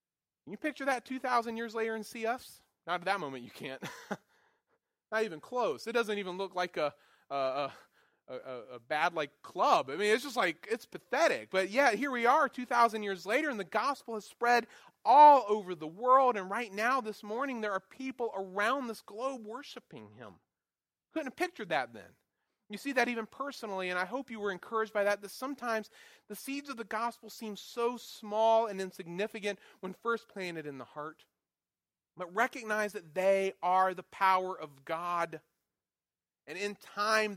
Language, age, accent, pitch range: English, 30-49, American, 180-230 Hz